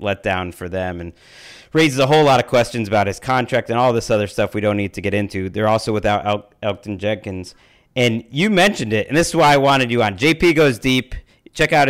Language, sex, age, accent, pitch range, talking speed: English, male, 30-49, American, 110-135 Hz, 240 wpm